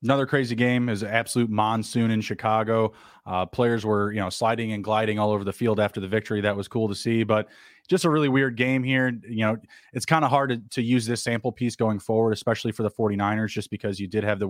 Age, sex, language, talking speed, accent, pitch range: 20-39, male, English, 245 wpm, American, 110-125 Hz